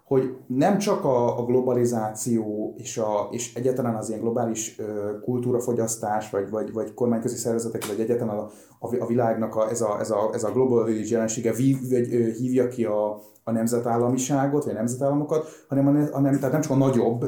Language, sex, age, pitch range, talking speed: Hungarian, male, 30-49, 115-130 Hz, 175 wpm